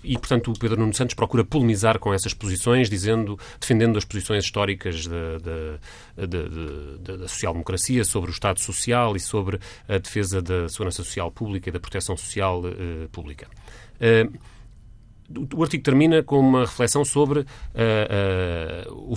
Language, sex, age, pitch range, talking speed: Portuguese, male, 30-49, 95-120 Hz, 140 wpm